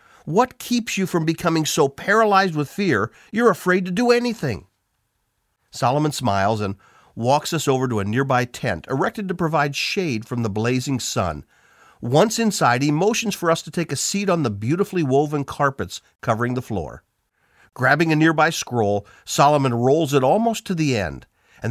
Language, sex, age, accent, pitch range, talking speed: English, male, 50-69, American, 120-180 Hz, 170 wpm